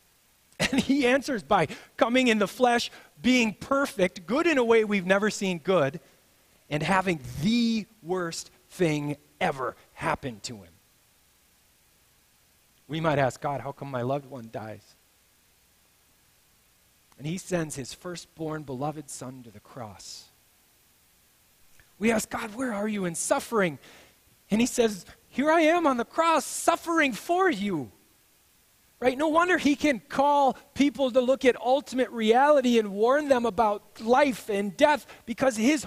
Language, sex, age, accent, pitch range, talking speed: English, male, 30-49, American, 155-255 Hz, 145 wpm